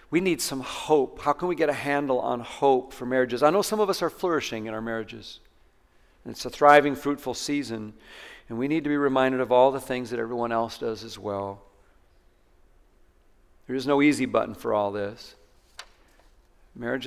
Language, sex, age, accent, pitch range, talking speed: English, male, 50-69, American, 130-205 Hz, 195 wpm